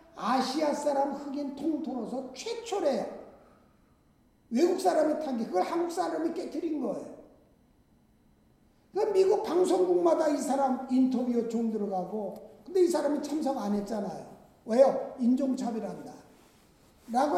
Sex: male